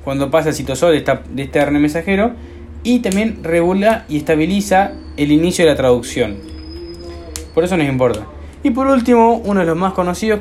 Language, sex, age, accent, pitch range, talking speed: Spanish, male, 20-39, Argentinian, 140-195 Hz, 175 wpm